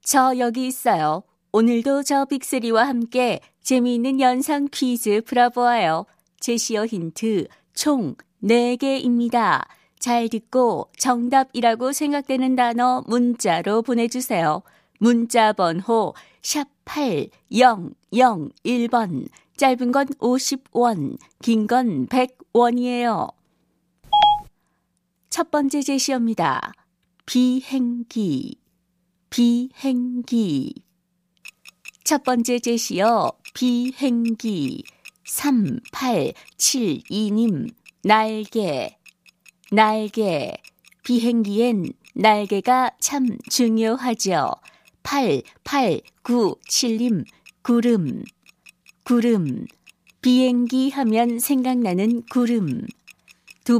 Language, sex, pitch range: Korean, female, 220-255 Hz